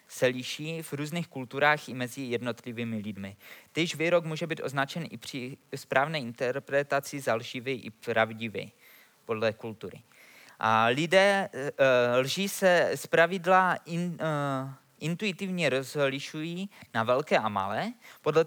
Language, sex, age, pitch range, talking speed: Czech, male, 20-39, 125-170 Hz, 120 wpm